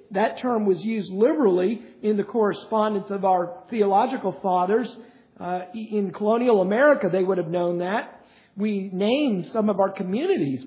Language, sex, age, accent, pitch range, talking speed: English, male, 50-69, American, 190-235 Hz, 150 wpm